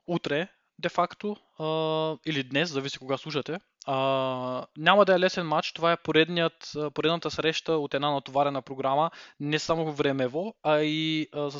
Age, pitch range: 20-39, 140-165 Hz